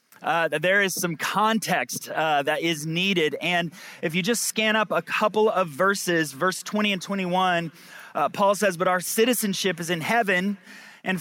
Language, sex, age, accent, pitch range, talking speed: English, male, 30-49, American, 175-215 Hz, 175 wpm